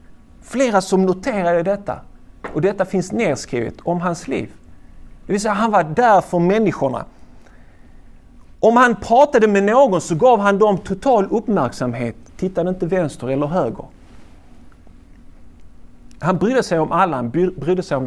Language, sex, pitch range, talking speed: Swedish, male, 120-195 Hz, 145 wpm